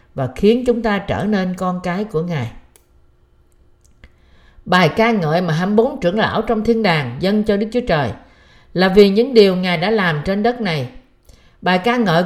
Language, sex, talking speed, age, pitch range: Vietnamese, female, 185 wpm, 50-69, 160-225 Hz